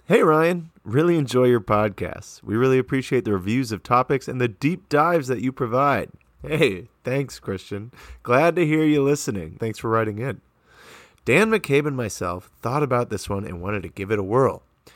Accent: American